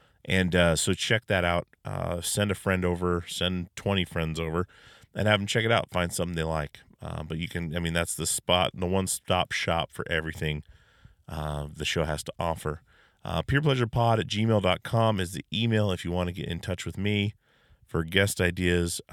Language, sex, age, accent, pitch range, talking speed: English, male, 30-49, American, 85-100 Hz, 205 wpm